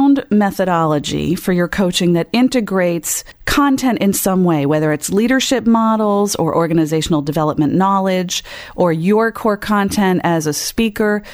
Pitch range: 155-210 Hz